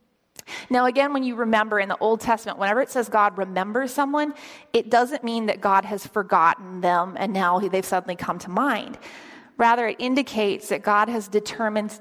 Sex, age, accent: female, 30-49, American